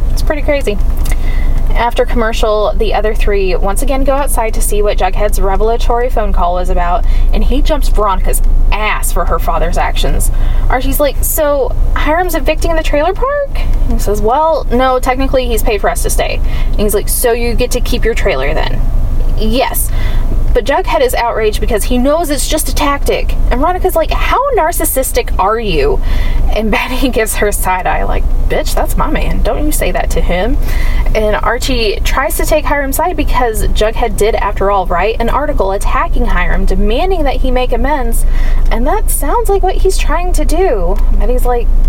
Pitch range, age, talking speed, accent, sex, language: 210-310 Hz, 10-29, 185 wpm, American, female, English